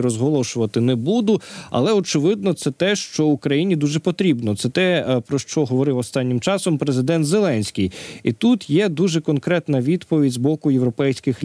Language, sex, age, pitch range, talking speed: Ukrainian, male, 20-39, 125-170 Hz, 150 wpm